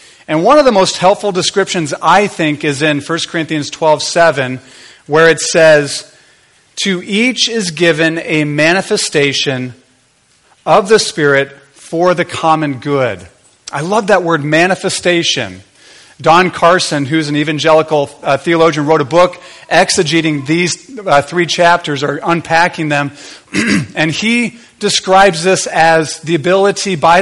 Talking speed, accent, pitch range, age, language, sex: 135 wpm, American, 155-195 Hz, 40-59, English, male